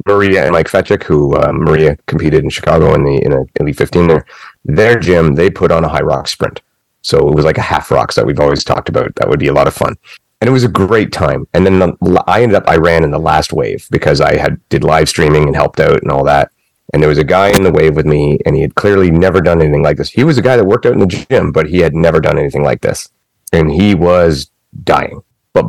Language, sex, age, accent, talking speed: English, male, 30-49, American, 275 wpm